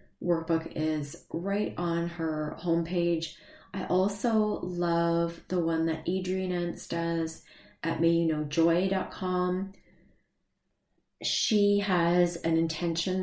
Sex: female